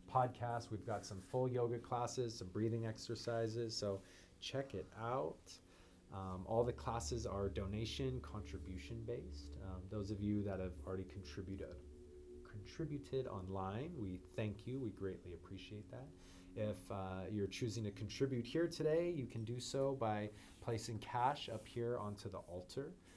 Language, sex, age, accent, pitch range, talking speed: English, male, 30-49, American, 95-115 Hz, 150 wpm